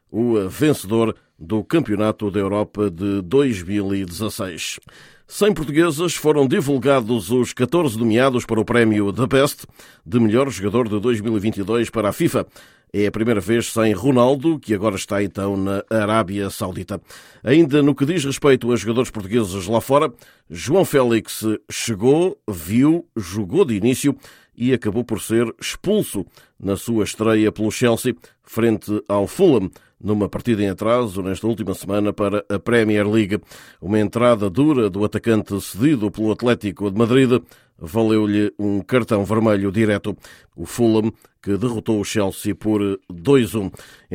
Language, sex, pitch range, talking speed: Portuguese, male, 105-125 Hz, 145 wpm